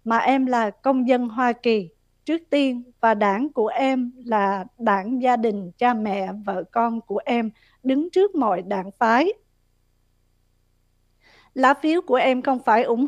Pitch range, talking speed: 220-270 Hz, 160 wpm